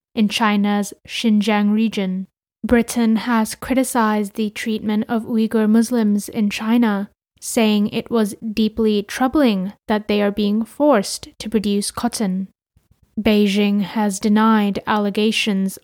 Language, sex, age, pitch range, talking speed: English, female, 10-29, 210-235 Hz, 115 wpm